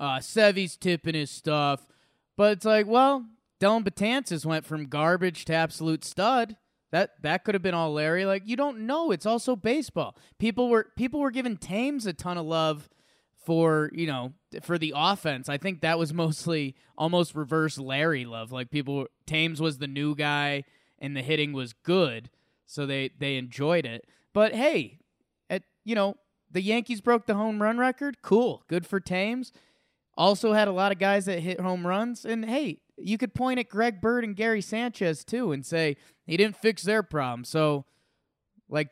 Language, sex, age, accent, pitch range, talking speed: English, male, 20-39, American, 145-215 Hz, 185 wpm